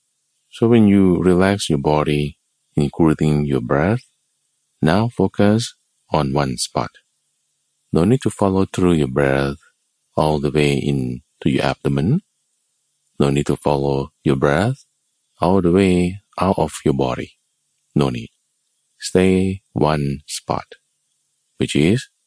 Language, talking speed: English, 125 wpm